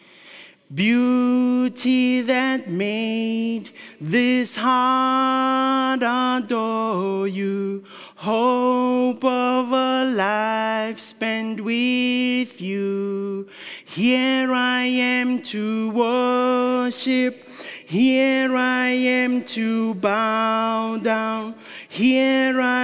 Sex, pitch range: male, 220-255 Hz